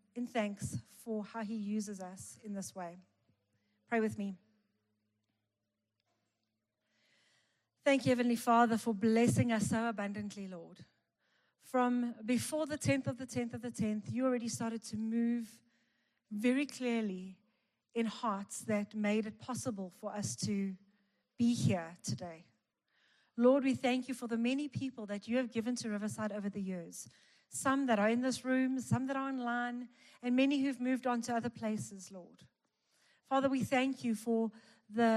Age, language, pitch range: 40-59, English, 205-245 Hz